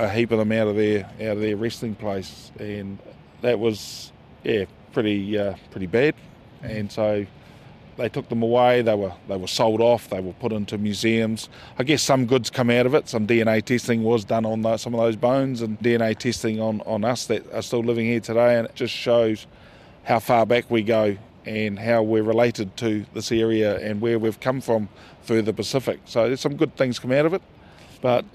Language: English